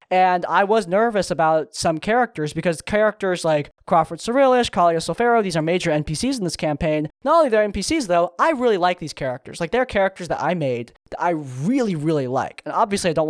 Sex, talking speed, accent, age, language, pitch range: male, 215 wpm, American, 10-29, English, 150-185 Hz